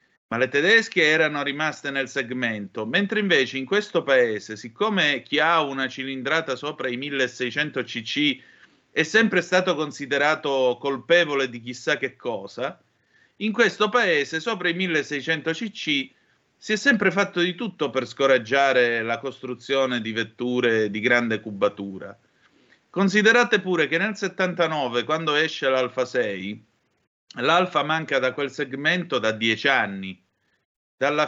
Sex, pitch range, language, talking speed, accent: male, 125-170 Hz, Italian, 130 wpm, native